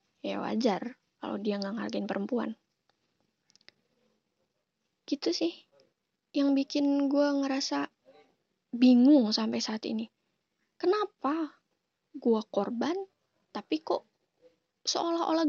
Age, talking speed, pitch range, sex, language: 20-39, 90 wpm, 230-305 Hz, female, Indonesian